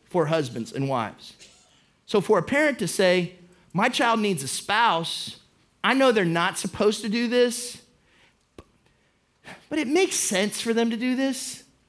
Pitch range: 185-240 Hz